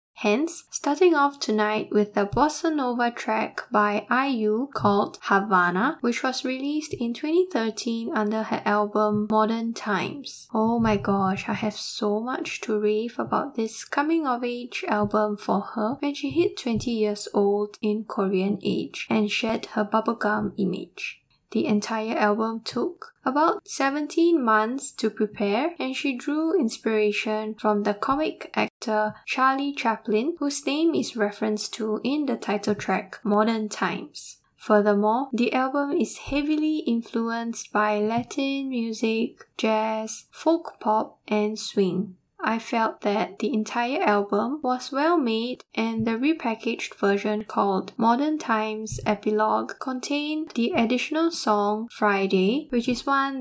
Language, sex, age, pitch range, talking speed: English, female, 10-29, 210-275 Hz, 140 wpm